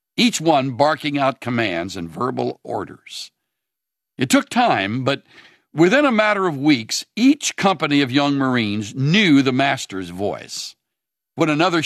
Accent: American